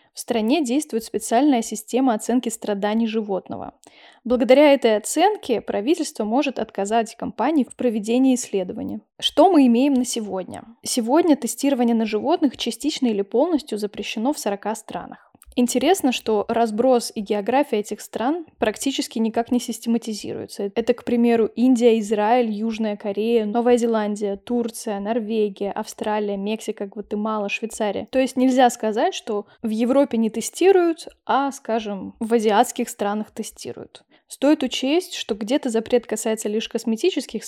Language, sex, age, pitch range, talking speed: Russian, female, 10-29, 215-260 Hz, 135 wpm